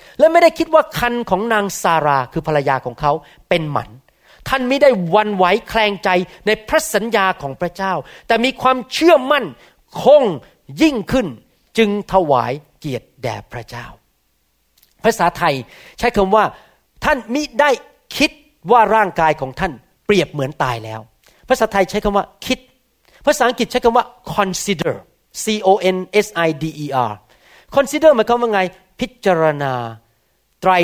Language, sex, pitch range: Thai, male, 145-240 Hz